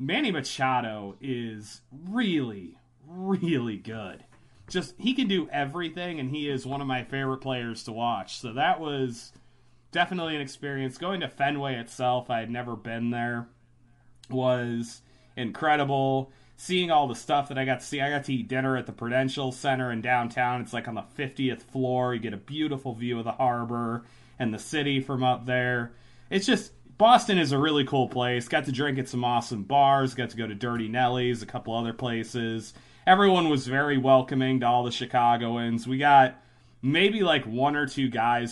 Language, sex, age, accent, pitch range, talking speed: English, male, 30-49, American, 120-140 Hz, 185 wpm